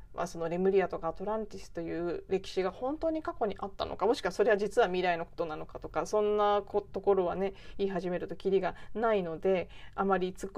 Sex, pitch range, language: female, 175-245 Hz, Japanese